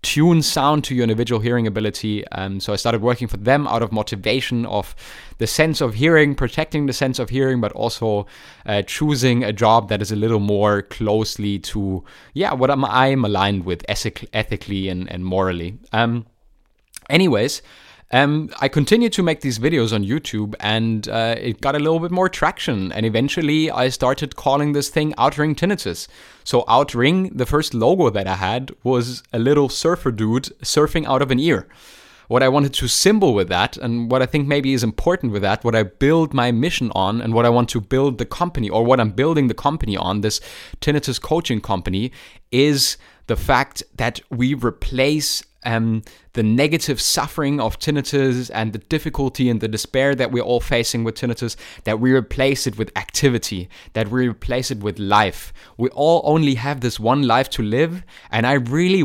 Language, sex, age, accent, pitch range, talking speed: English, male, 20-39, German, 110-145 Hz, 190 wpm